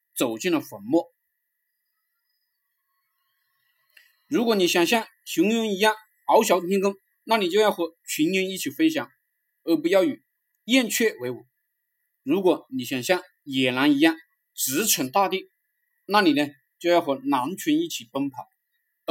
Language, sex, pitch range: Chinese, male, 175-295 Hz